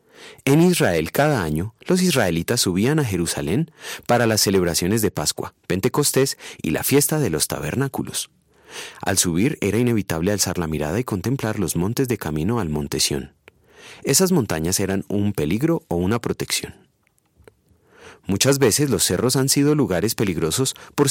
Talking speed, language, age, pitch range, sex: 155 wpm, Spanish, 30-49, 90-135 Hz, male